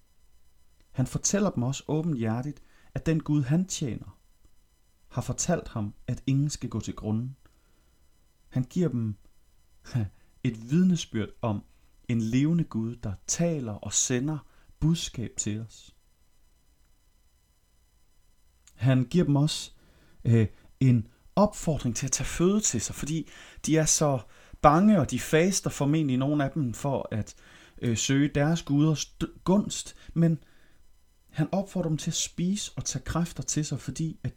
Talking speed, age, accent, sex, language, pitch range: 135 wpm, 30-49, native, male, Danish, 90-145 Hz